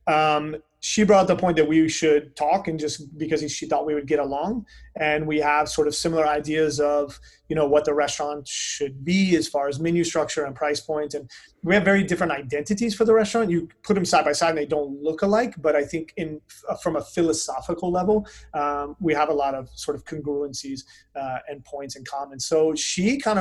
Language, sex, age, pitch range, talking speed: English, male, 30-49, 145-175 Hz, 220 wpm